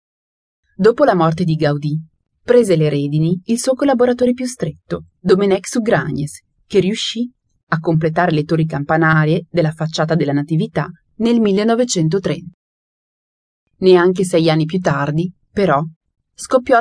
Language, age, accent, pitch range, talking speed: Italian, 30-49, native, 160-200 Hz, 125 wpm